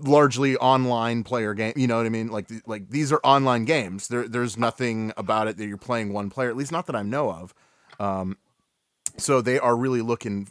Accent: American